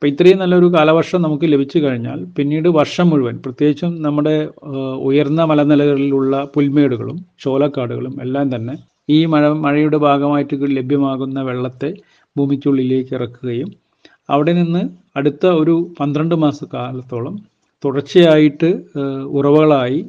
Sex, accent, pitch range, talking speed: male, native, 130-155 Hz, 100 wpm